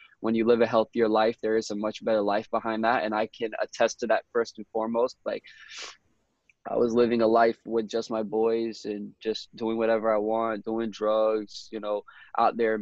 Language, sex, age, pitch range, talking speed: English, male, 20-39, 110-120 Hz, 210 wpm